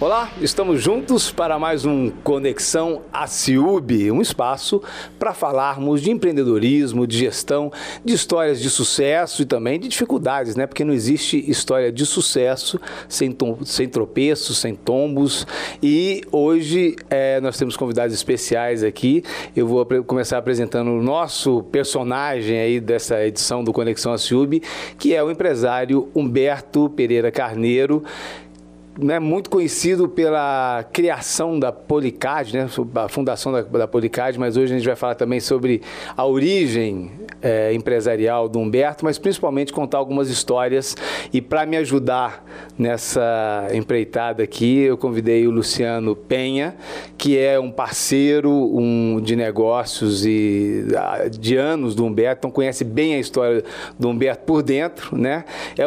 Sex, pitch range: male, 115-145 Hz